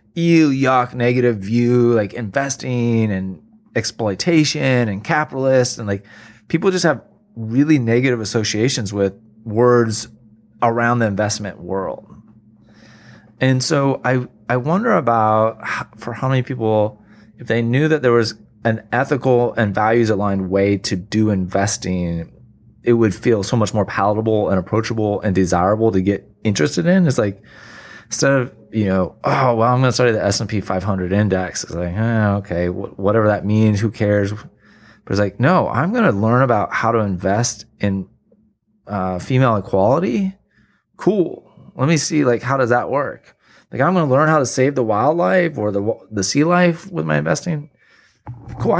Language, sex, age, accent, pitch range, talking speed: English, male, 20-39, American, 105-130 Hz, 160 wpm